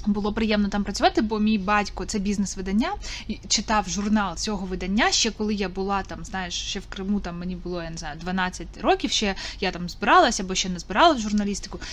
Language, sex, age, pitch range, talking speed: Ukrainian, female, 20-39, 190-225 Hz, 185 wpm